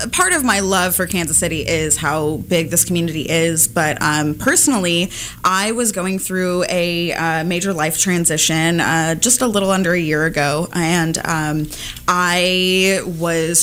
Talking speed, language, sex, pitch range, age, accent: 165 wpm, English, female, 170-210 Hz, 20-39, American